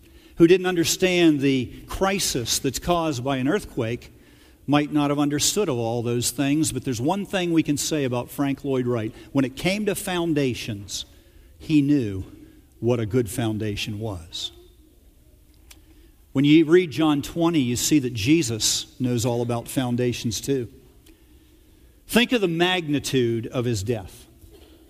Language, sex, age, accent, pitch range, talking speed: English, male, 50-69, American, 115-185 Hz, 150 wpm